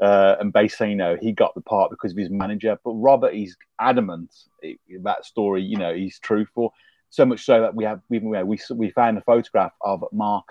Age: 30-49